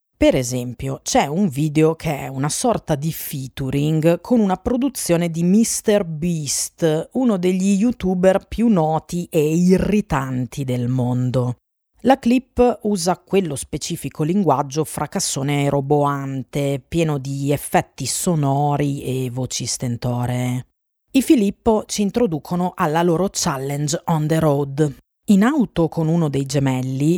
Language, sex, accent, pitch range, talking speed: Italian, female, native, 135-185 Hz, 125 wpm